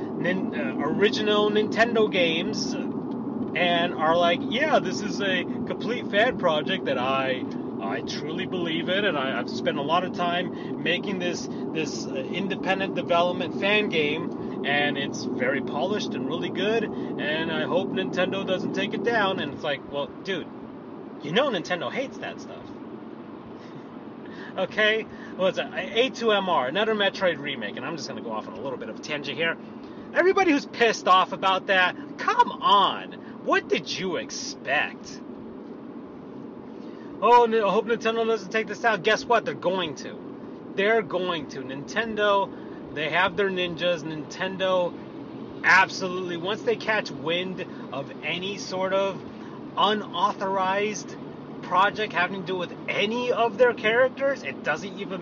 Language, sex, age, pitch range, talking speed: English, male, 30-49, 185-235 Hz, 150 wpm